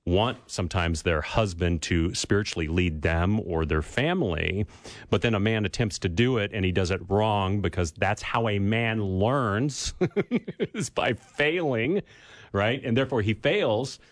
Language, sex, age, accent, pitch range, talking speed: English, male, 40-59, American, 95-130 Hz, 160 wpm